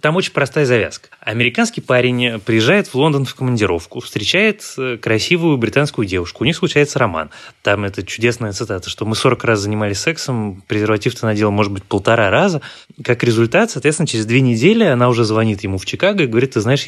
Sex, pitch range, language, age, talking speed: male, 100-130 Hz, Russian, 20-39, 180 wpm